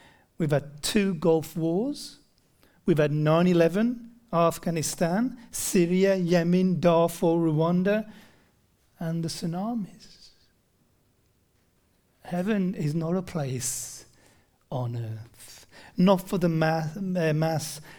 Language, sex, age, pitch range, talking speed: English, male, 40-59, 165-215 Hz, 90 wpm